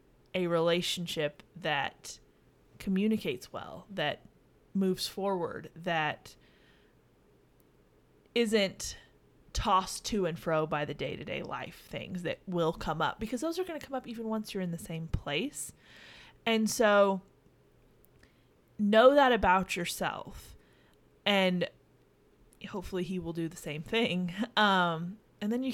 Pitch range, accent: 175-235 Hz, American